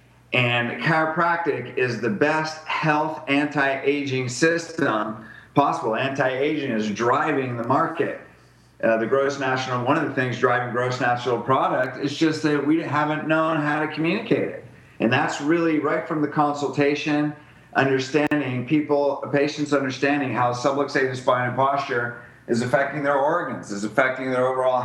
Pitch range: 125-150 Hz